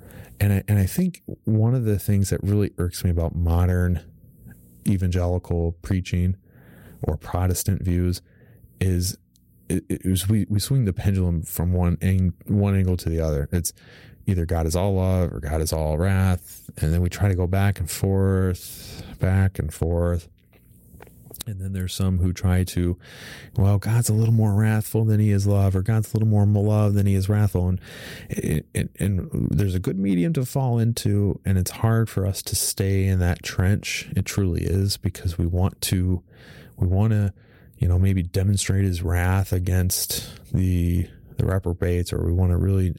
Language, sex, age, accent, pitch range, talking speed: English, male, 30-49, American, 90-105 Hz, 185 wpm